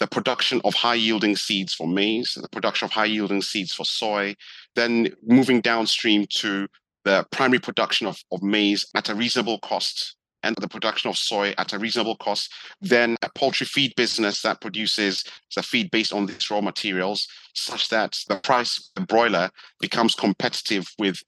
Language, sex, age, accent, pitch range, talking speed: English, male, 30-49, British, 100-120 Hz, 170 wpm